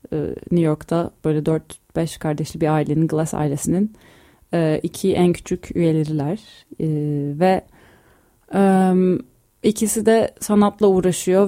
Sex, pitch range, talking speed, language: female, 160-185 Hz, 95 wpm, Turkish